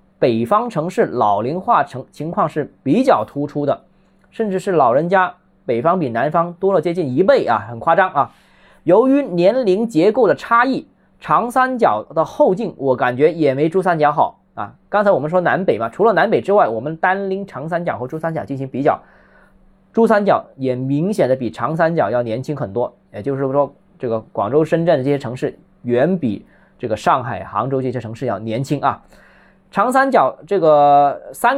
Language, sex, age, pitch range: Chinese, male, 20-39, 125-180 Hz